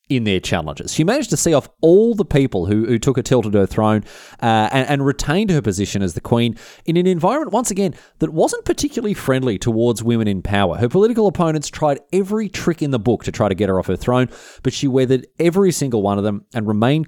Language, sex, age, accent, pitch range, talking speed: English, male, 20-39, Australian, 105-145 Hz, 240 wpm